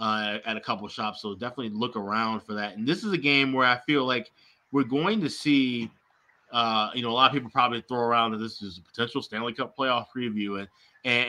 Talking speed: 245 wpm